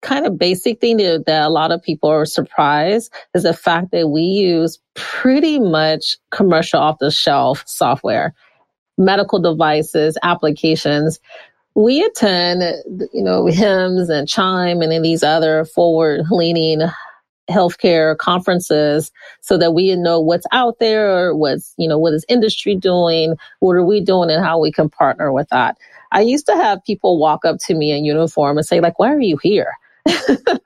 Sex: female